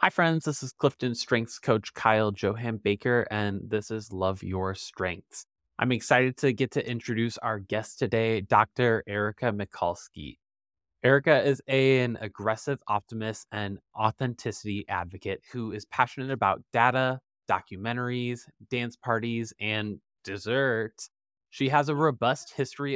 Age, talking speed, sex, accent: 20-39, 135 wpm, male, American